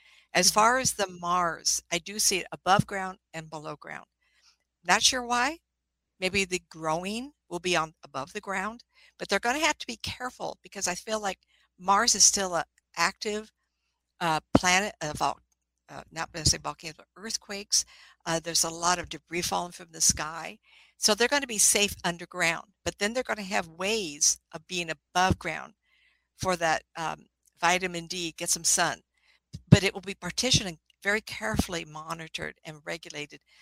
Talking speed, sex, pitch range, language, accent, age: 180 wpm, female, 165-205 Hz, English, American, 60-79